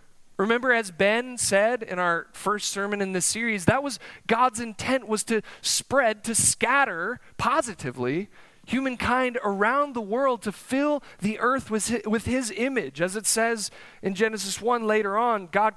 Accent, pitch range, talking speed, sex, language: American, 165-235 Hz, 155 wpm, male, English